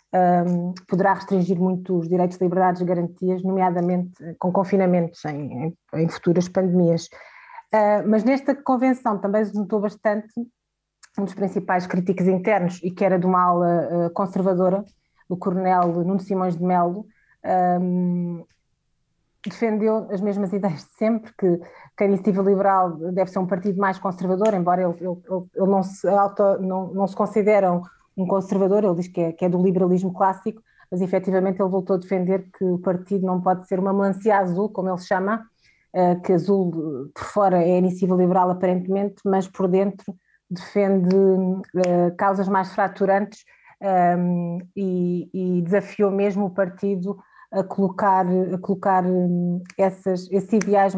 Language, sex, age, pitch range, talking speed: Portuguese, female, 20-39, 180-200 Hz, 150 wpm